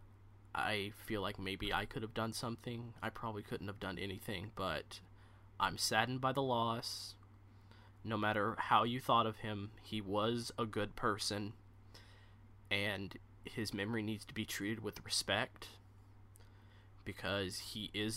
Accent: American